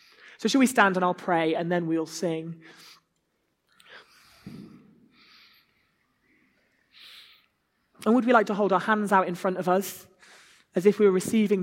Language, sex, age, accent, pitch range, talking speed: English, male, 20-39, British, 165-200 Hz, 150 wpm